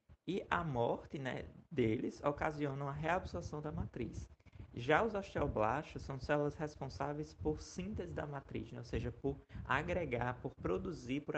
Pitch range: 120-155 Hz